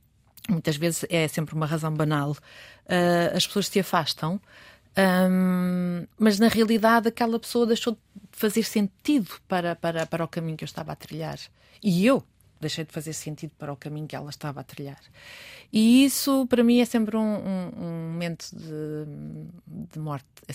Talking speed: 175 wpm